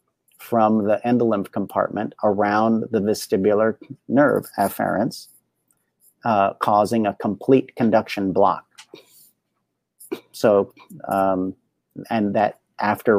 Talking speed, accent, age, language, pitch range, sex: 90 wpm, American, 40-59, English, 100-115 Hz, male